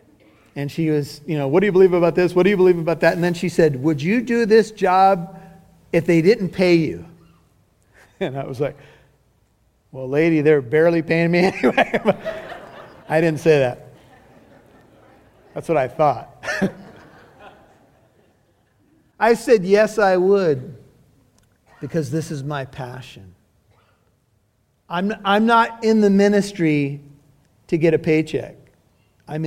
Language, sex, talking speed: English, male, 145 wpm